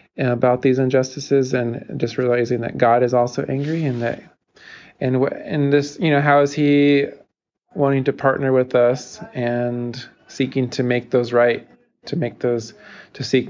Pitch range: 115-130 Hz